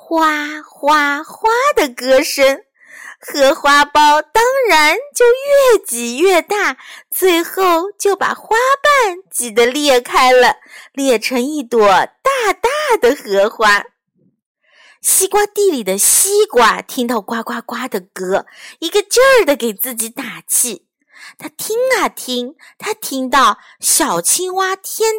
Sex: female